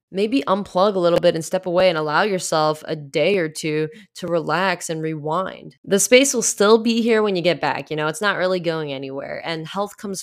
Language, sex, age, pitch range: English, female, 10-29, 150-205 Hz